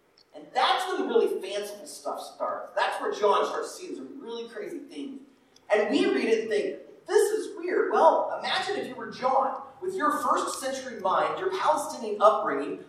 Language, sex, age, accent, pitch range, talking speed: English, male, 30-49, American, 255-410 Hz, 185 wpm